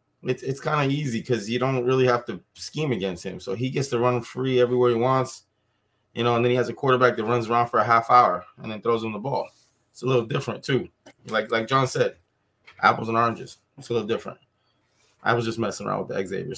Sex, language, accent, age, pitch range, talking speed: male, English, American, 20-39, 115-130 Hz, 245 wpm